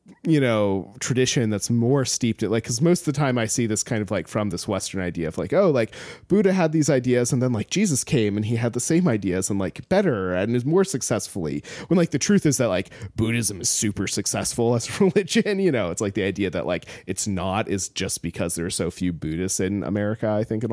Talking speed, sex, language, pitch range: 250 wpm, male, English, 105-130 Hz